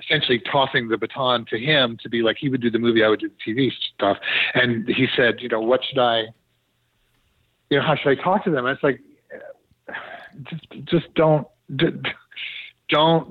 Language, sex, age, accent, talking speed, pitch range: English, male, 40-59, American, 195 wpm, 115-150 Hz